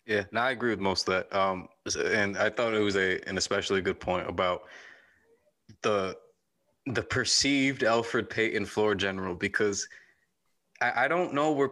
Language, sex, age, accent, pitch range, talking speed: English, male, 20-39, American, 105-125 Hz, 170 wpm